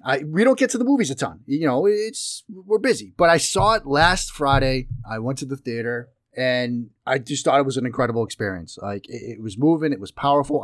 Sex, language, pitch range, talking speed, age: male, English, 105-130 Hz, 235 wpm, 30-49